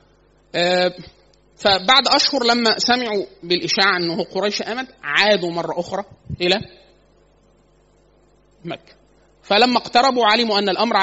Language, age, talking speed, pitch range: Arabic, 30-49, 100 wpm, 175-235 Hz